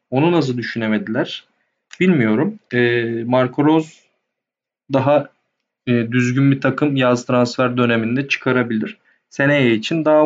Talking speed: 100 wpm